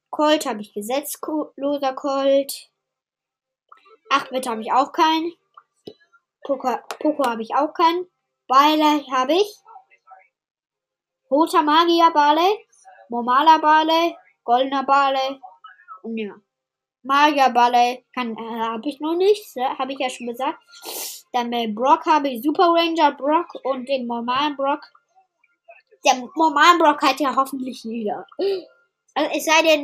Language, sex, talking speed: English, female, 125 wpm